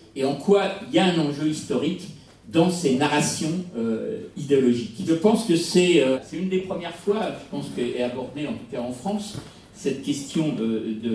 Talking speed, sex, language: 200 wpm, male, French